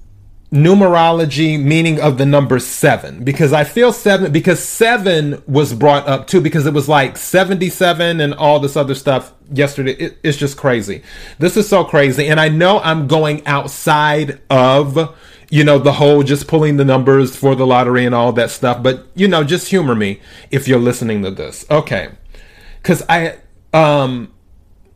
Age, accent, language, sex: 30-49, American, English, male